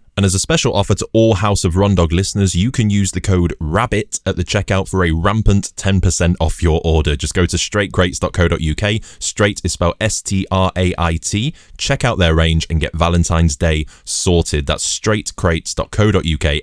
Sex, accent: male, British